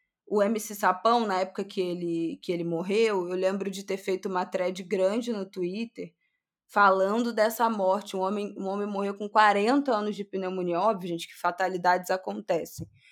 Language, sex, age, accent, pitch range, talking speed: Portuguese, female, 20-39, Brazilian, 185-215 Hz, 175 wpm